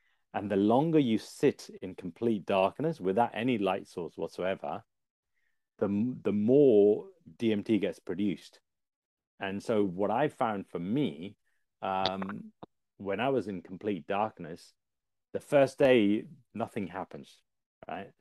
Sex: male